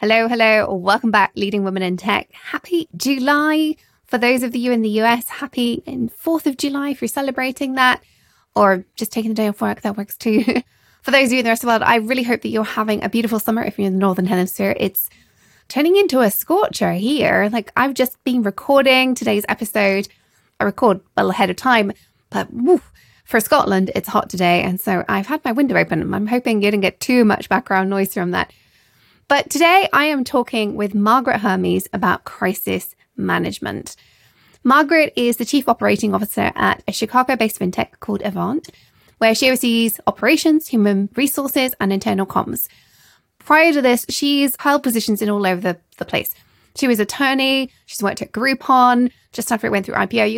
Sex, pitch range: female, 205-270 Hz